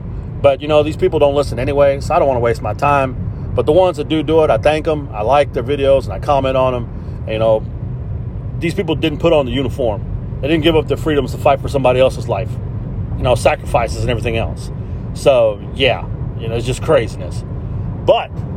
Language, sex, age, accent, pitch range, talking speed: English, male, 40-59, American, 115-155 Hz, 225 wpm